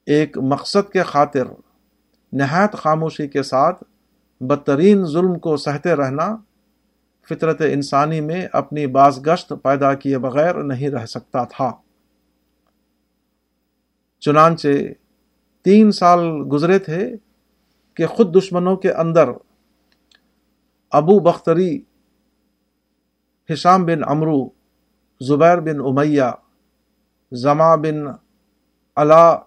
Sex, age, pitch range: male, 50-69, 140-165 Hz